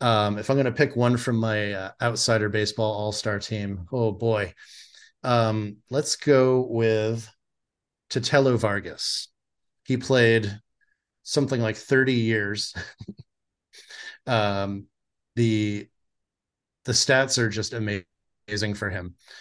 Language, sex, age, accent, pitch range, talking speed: English, male, 30-49, American, 105-120 Hz, 115 wpm